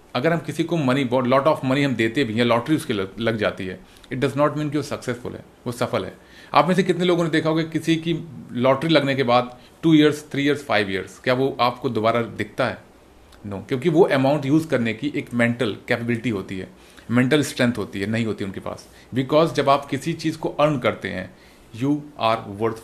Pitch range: 115-150 Hz